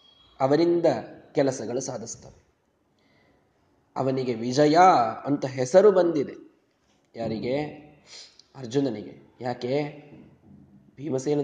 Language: Kannada